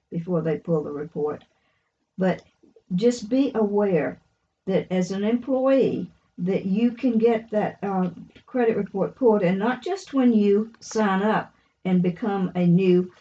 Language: English